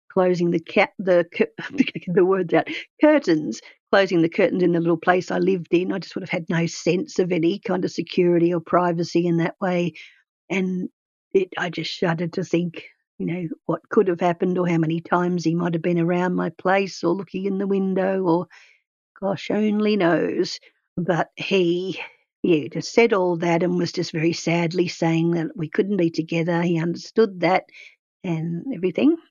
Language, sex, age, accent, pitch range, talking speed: English, female, 50-69, Australian, 170-195 Hz, 185 wpm